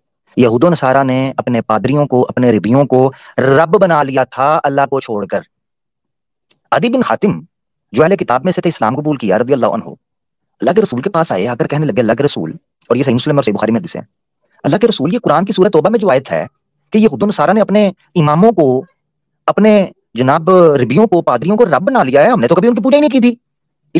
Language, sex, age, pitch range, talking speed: Urdu, male, 30-49, 145-235 Hz, 230 wpm